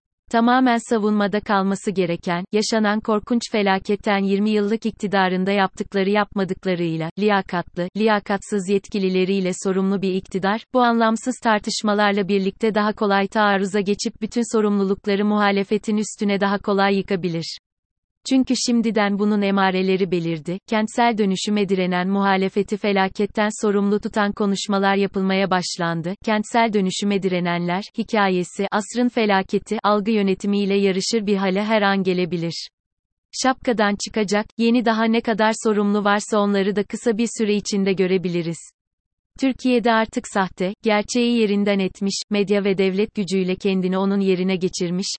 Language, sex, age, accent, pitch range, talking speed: Turkish, female, 30-49, native, 190-215 Hz, 120 wpm